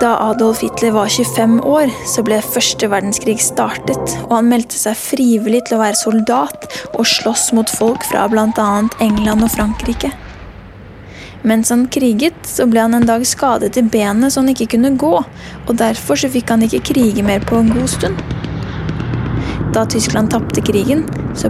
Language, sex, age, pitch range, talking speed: English, female, 10-29, 220-255 Hz, 175 wpm